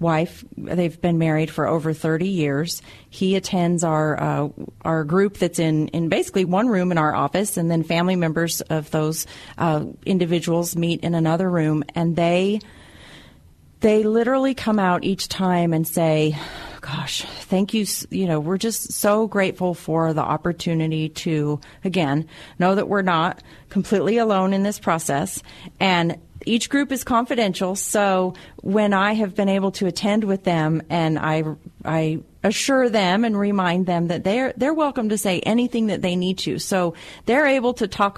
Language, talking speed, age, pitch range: English, 170 wpm, 40-59, 165-205 Hz